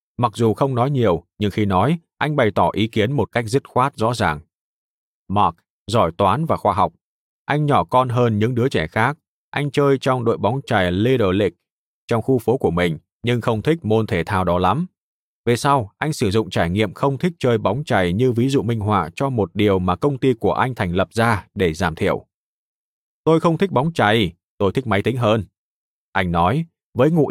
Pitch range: 100-135 Hz